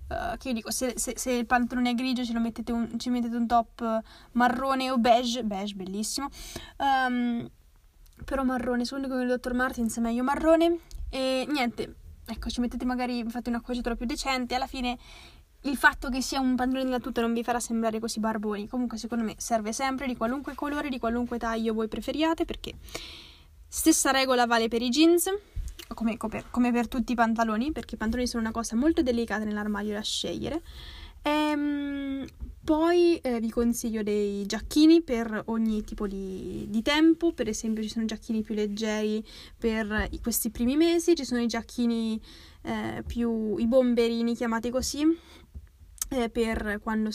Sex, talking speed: female, 170 wpm